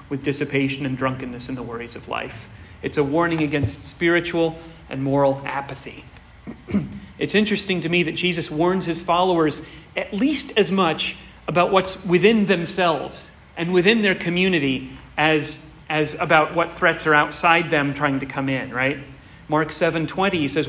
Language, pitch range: English, 145-185 Hz